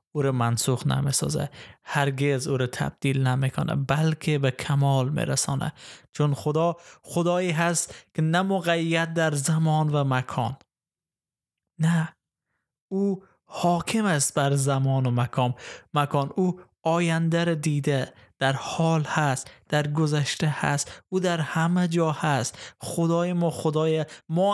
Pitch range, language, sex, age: 140-165 Hz, Persian, male, 20-39